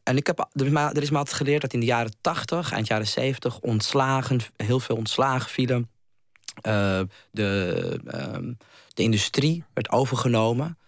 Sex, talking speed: male, 155 wpm